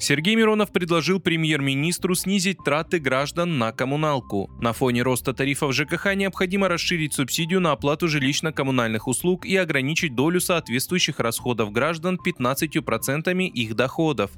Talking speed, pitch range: 125 wpm, 120-165 Hz